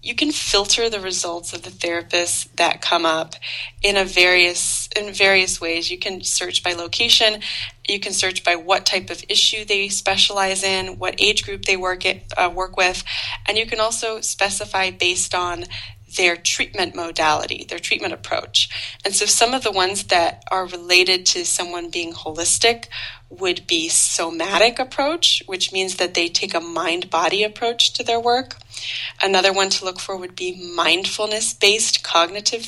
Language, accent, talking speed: English, American, 170 wpm